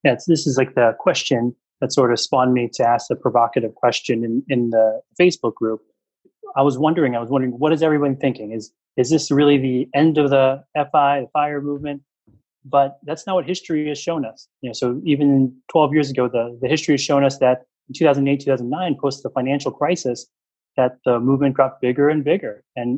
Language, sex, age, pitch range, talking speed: English, male, 20-39, 125-145 Hz, 225 wpm